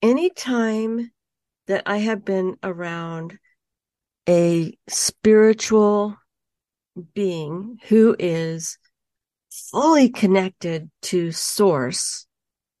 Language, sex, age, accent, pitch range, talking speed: English, female, 50-69, American, 185-235 Hz, 75 wpm